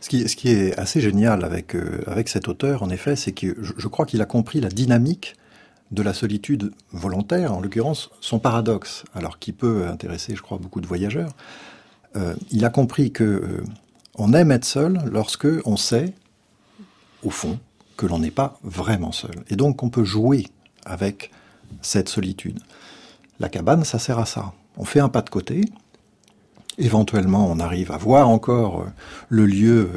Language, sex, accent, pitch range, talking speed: French, male, French, 100-135 Hz, 180 wpm